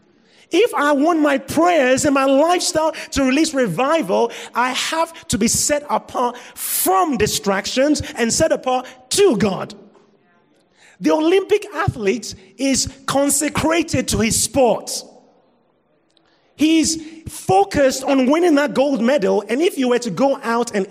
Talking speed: 135 wpm